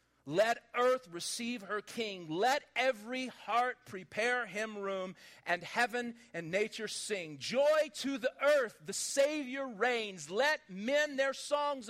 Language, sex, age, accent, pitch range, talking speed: English, male, 40-59, American, 175-270 Hz, 135 wpm